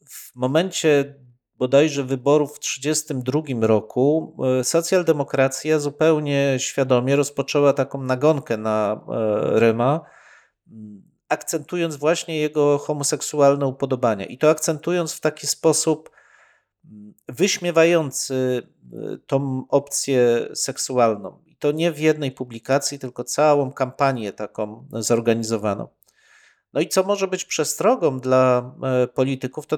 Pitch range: 130-155 Hz